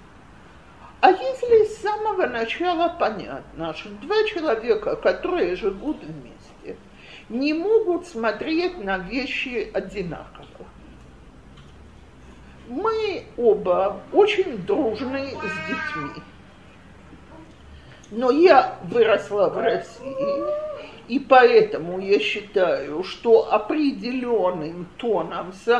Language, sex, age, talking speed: Russian, male, 50-69, 85 wpm